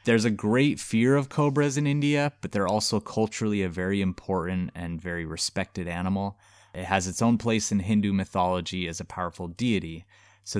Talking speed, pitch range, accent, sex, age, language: 180 wpm, 90-105 Hz, American, male, 20-39, English